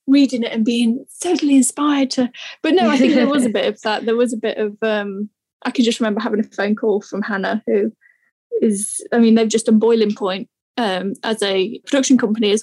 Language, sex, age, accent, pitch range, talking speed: English, female, 10-29, British, 215-250 Hz, 230 wpm